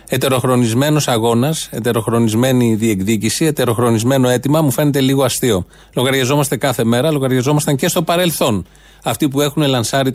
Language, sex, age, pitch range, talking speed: Greek, male, 30-49, 125-155 Hz, 125 wpm